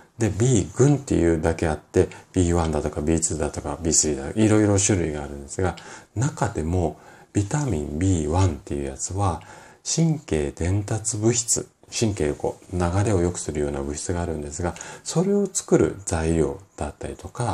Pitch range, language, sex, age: 75-110 Hz, Japanese, male, 40-59